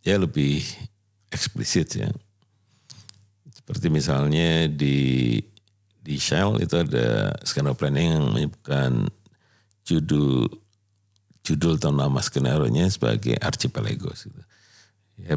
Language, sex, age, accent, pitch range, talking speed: Indonesian, male, 50-69, native, 70-100 Hz, 90 wpm